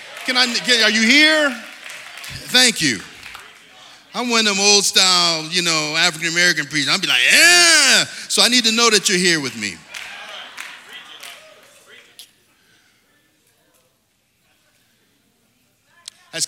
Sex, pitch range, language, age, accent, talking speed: male, 110-165 Hz, English, 40-59, American, 115 wpm